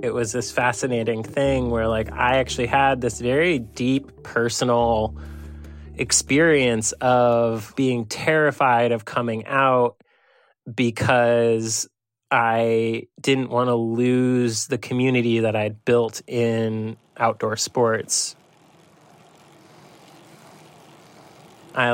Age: 20-39